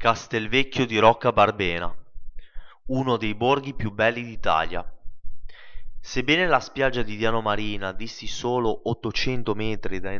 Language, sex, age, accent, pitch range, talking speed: Italian, male, 20-39, native, 105-125 Hz, 125 wpm